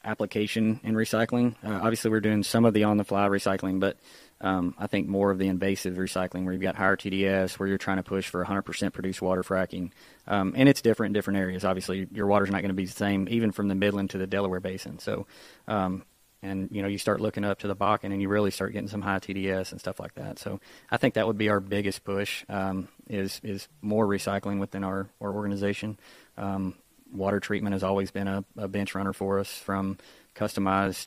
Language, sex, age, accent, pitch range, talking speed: English, male, 20-39, American, 95-105 Hz, 230 wpm